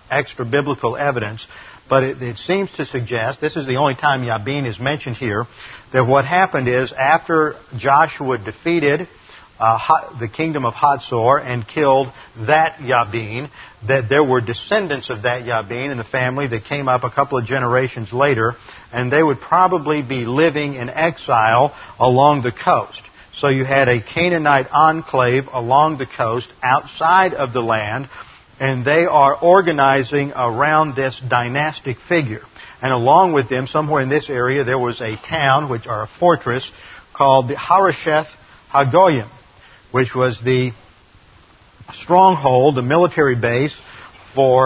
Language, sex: English, male